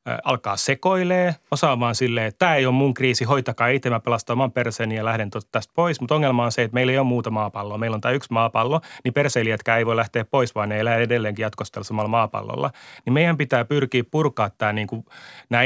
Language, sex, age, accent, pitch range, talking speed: Finnish, male, 30-49, native, 110-125 Hz, 210 wpm